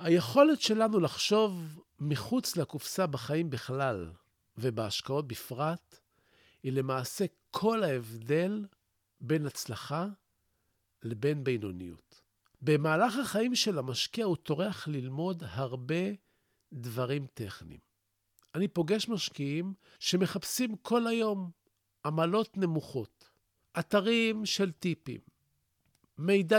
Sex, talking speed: male, 90 wpm